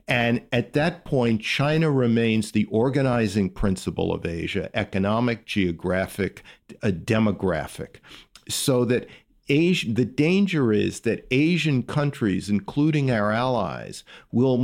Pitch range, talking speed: 100-130 Hz, 115 wpm